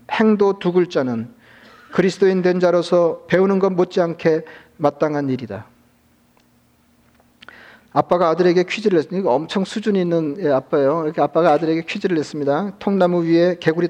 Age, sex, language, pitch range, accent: 40-59, male, Korean, 140-175 Hz, native